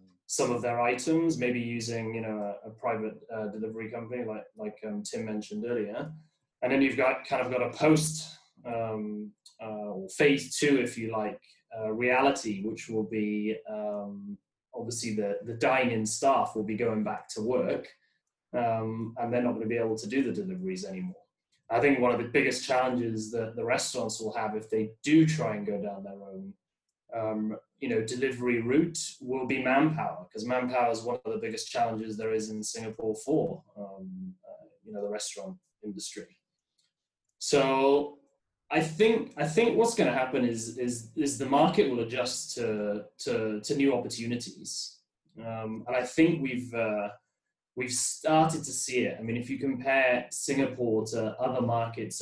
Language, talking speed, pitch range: English, 180 wpm, 110-135 Hz